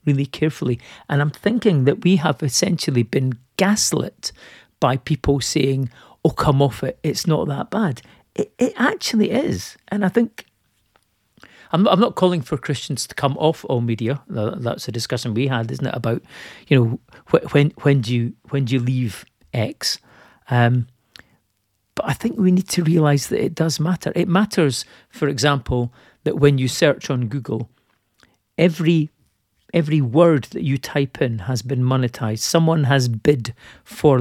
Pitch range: 120-155 Hz